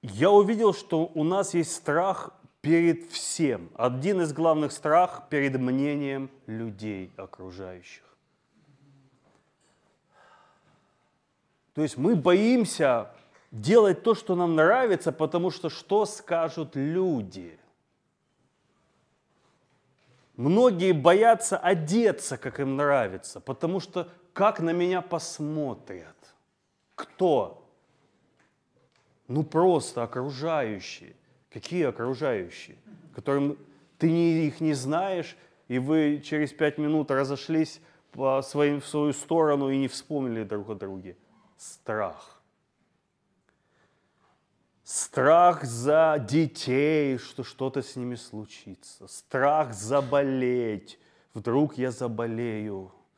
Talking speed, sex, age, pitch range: 95 wpm, male, 30-49, 130-170 Hz